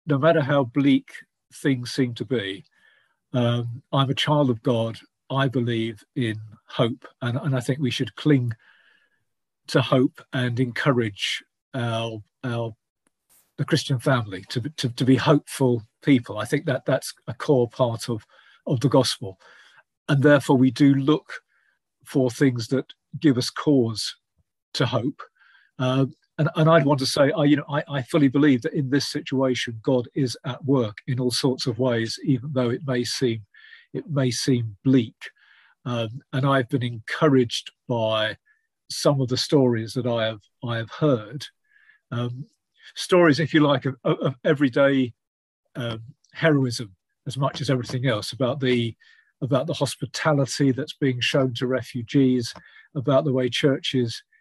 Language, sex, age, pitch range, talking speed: English, male, 50-69, 120-145 Hz, 155 wpm